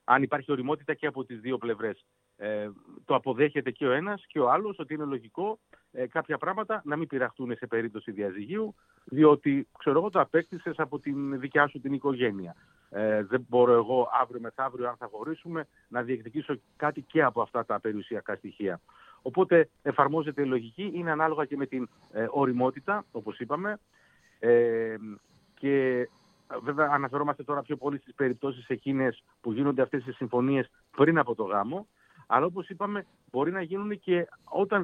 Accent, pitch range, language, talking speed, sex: native, 120-155 Hz, Greek, 170 wpm, male